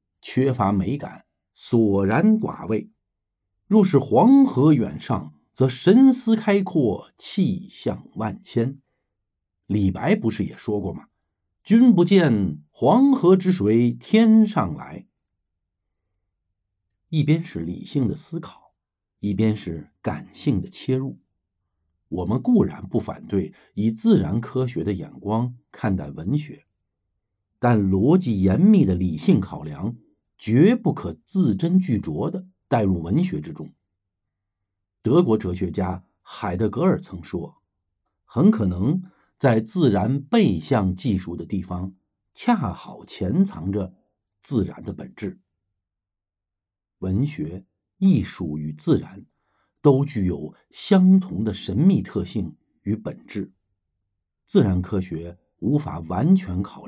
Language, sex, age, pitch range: Chinese, male, 50-69, 95-155 Hz